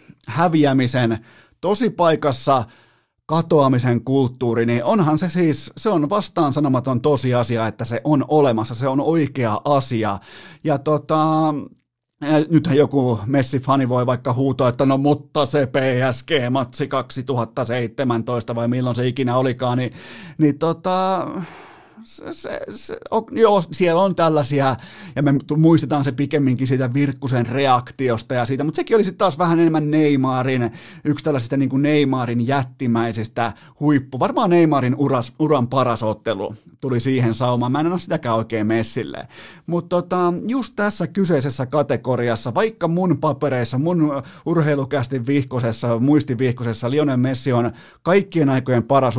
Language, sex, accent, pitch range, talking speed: Finnish, male, native, 125-155 Hz, 140 wpm